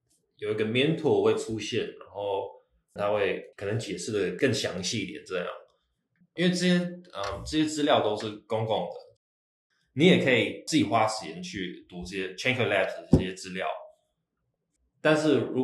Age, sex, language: 20-39, male, Chinese